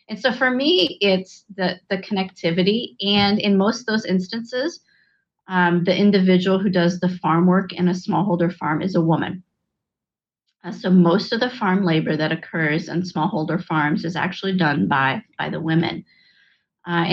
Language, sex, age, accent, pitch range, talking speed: English, female, 30-49, American, 170-195 Hz, 170 wpm